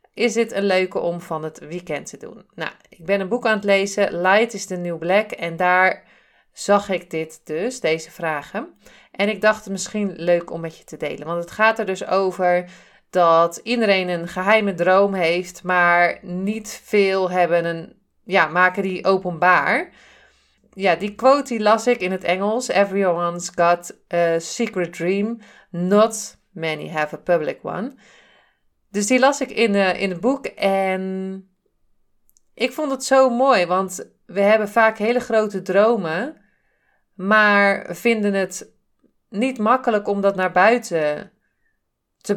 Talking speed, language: 160 wpm, Dutch